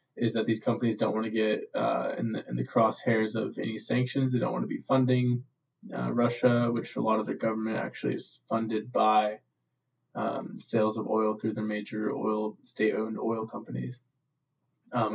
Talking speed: 185 wpm